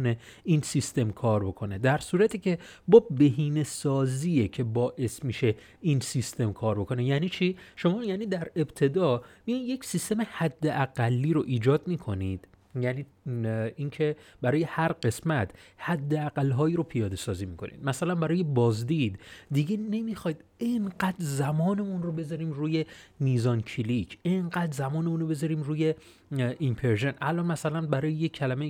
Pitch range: 125-175 Hz